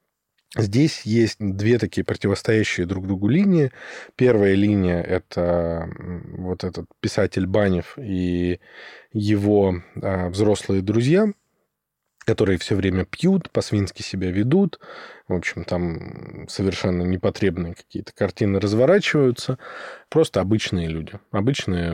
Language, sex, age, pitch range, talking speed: Russian, male, 20-39, 90-120 Hz, 105 wpm